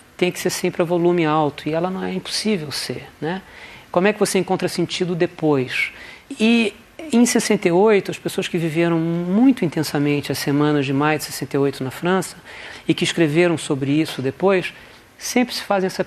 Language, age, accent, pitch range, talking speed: Portuguese, 50-69, Brazilian, 155-190 Hz, 180 wpm